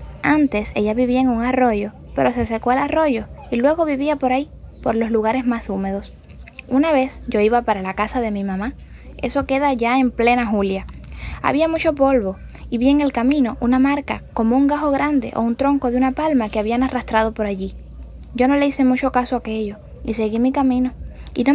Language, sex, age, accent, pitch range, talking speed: Spanish, female, 10-29, American, 220-275 Hz, 210 wpm